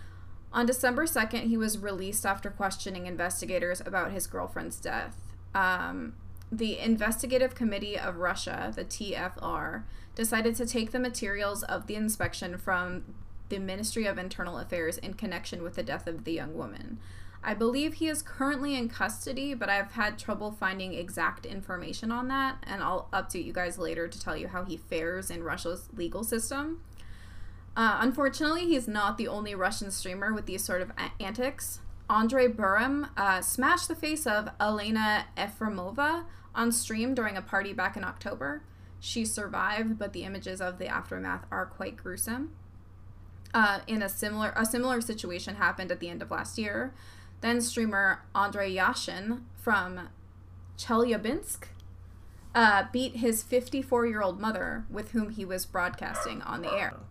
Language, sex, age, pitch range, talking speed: English, female, 20-39, 175-230 Hz, 160 wpm